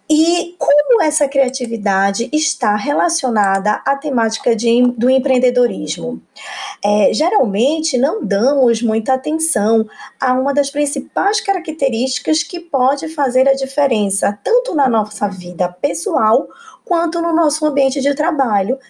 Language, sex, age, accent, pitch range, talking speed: Portuguese, female, 20-39, Brazilian, 225-300 Hz, 115 wpm